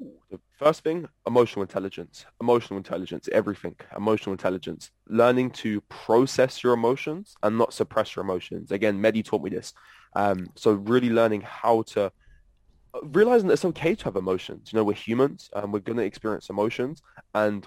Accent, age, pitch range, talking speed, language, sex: British, 20-39, 105-125 Hz, 170 wpm, English, male